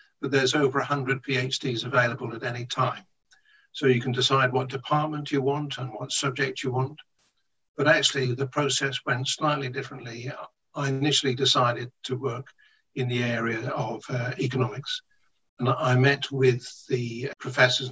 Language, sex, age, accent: English, male, 60-79, British